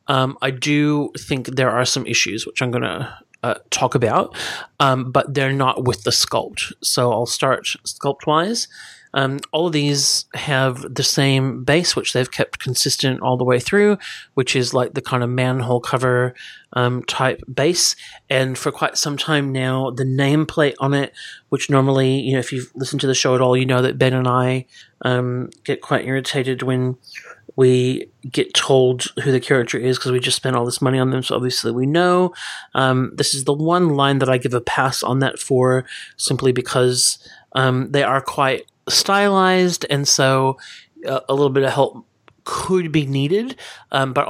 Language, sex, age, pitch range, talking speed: English, male, 30-49, 130-140 Hz, 185 wpm